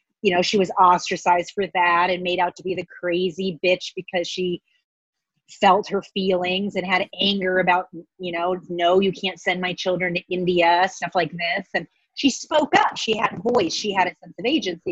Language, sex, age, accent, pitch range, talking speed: English, female, 30-49, American, 185-235 Hz, 205 wpm